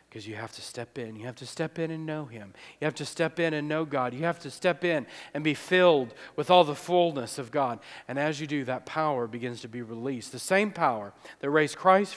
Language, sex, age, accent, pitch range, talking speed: English, male, 40-59, American, 145-195 Hz, 255 wpm